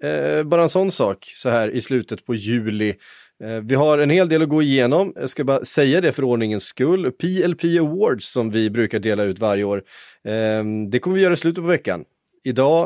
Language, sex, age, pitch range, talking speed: Swedish, male, 30-49, 110-150 Hz, 220 wpm